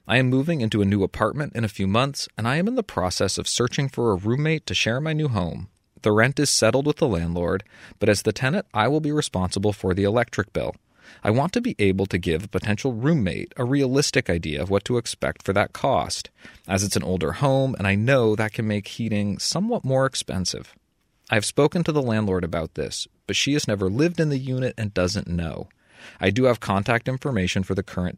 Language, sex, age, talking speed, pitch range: English, male, 30-49, 230 wpm, 95-130 Hz